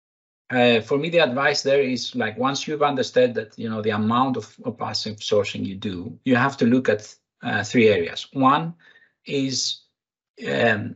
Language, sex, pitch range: English, male, 120-170 Hz